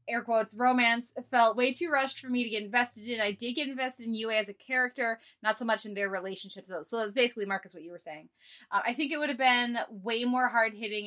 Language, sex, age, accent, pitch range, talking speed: English, female, 20-39, American, 195-245 Hz, 255 wpm